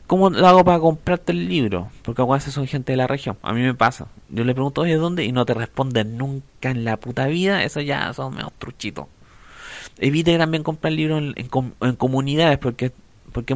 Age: 30-49